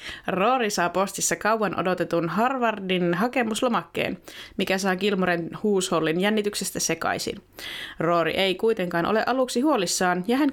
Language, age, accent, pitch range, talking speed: Finnish, 20-39, native, 170-210 Hz, 120 wpm